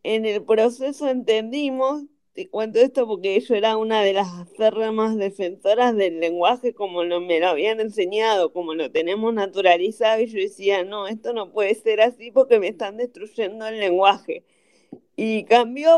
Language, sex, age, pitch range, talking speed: Spanish, female, 20-39, 205-250 Hz, 170 wpm